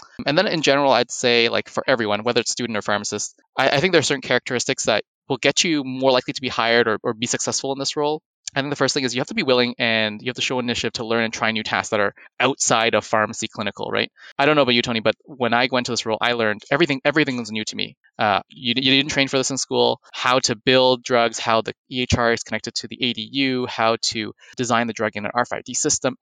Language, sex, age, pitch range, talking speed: English, male, 20-39, 115-135 Hz, 270 wpm